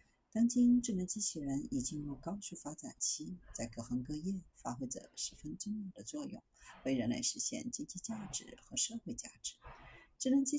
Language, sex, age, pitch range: Chinese, female, 50-69, 155-245 Hz